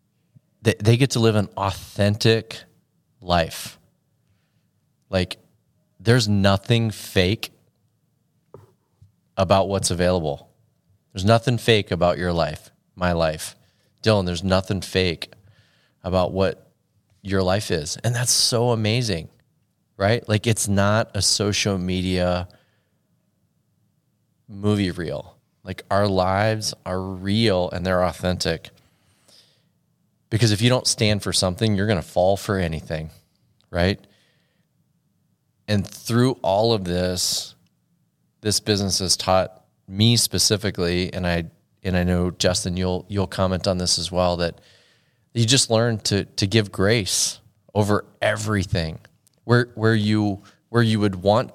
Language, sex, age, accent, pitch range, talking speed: English, male, 30-49, American, 95-115 Hz, 125 wpm